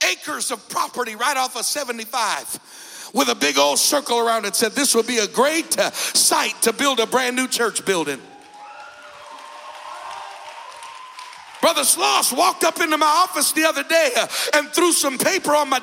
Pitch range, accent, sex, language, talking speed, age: 245-340 Hz, American, male, English, 170 wpm, 60-79